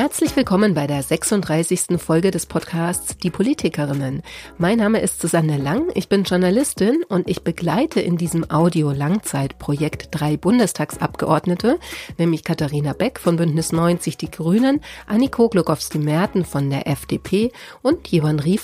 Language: German